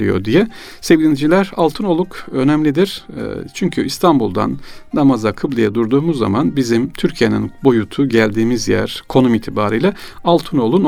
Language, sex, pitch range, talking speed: Turkish, male, 110-140 Hz, 110 wpm